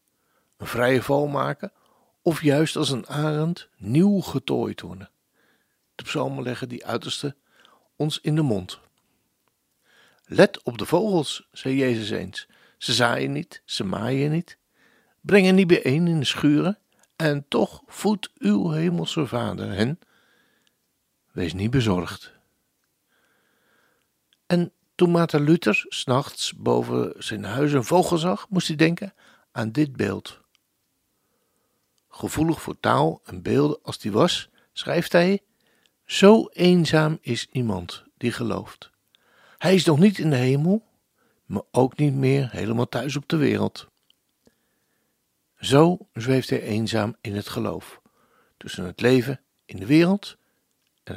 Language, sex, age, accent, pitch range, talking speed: Dutch, male, 60-79, Dutch, 120-175 Hz, 135 wpm